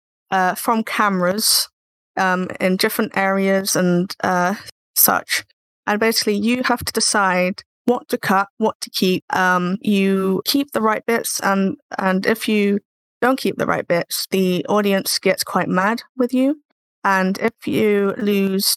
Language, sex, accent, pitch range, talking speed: English, female, British, 190-235 Hz, 155 wpm